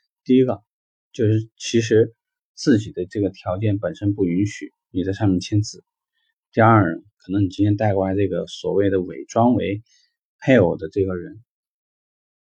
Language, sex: Chinese, male